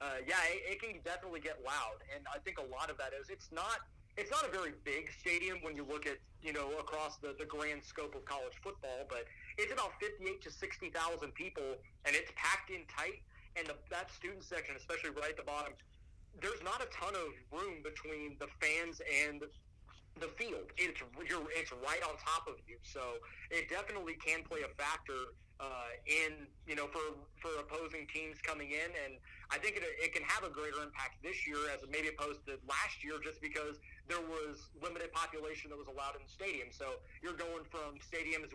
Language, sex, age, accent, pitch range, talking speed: English, male, 30-49, American, 145-165 Hz, 205 wpm